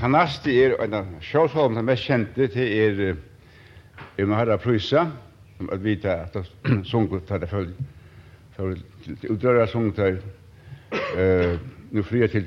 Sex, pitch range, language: male, 100-130 Hz, English